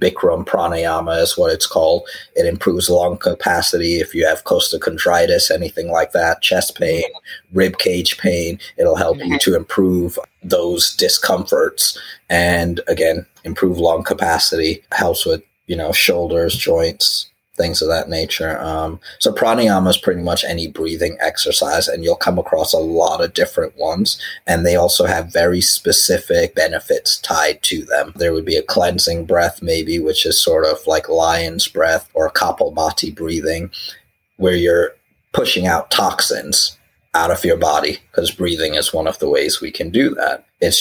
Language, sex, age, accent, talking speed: English, male, 30-49, American, 160 wpm